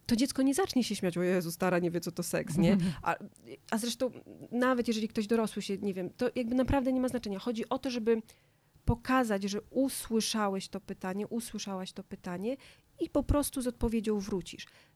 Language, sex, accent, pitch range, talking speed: Polish, female, native, 200-240 Hz, 195 wpm